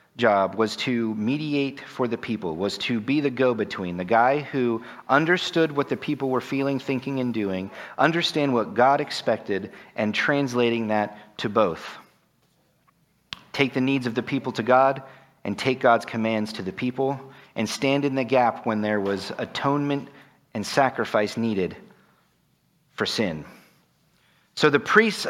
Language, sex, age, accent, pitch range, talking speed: English, male, 40-59, American, 110-135 Hz, 155 wpm